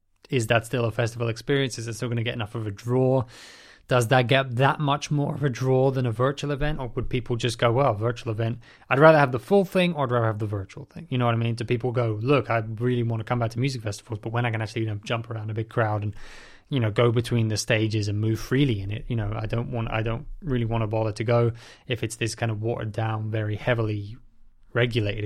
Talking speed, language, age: 275 wpm, English, 20-39